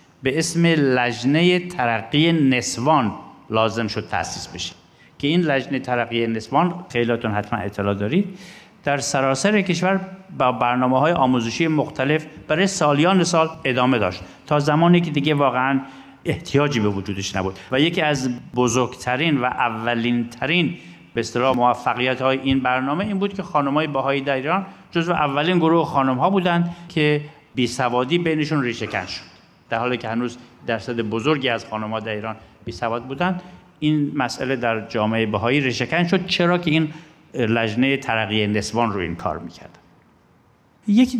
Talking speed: 145 wpm